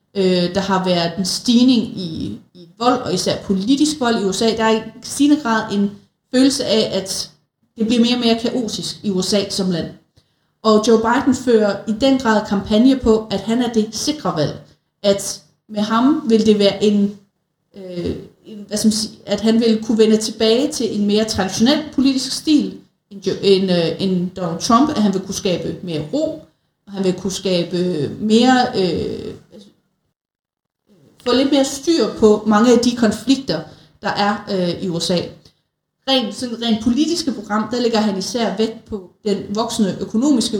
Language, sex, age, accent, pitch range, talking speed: Danish, female, 30-49, native, 190-230 Hz, 175 wpm